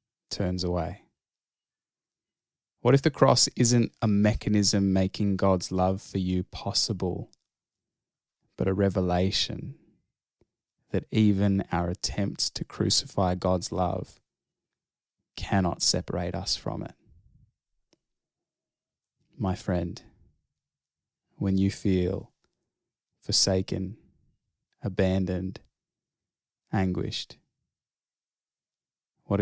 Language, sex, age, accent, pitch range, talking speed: English, male, 20-39, Australian, 90-100 Hz, 80 wpm